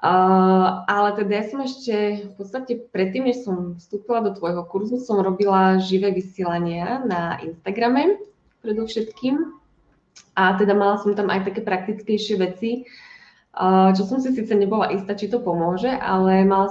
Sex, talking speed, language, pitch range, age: female, 155 wpm, Czech, 180-215 Hz, 20-39